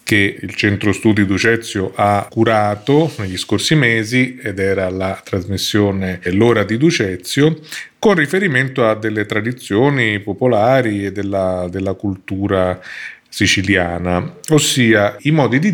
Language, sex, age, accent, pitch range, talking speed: Italian, male, 30-49, native, 100-130 Hz, 120 wpm